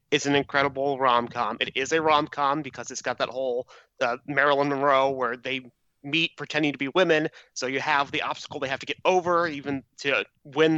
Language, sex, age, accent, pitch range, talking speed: English, male, 30-49, American, 130-155 Hz, 200 wpm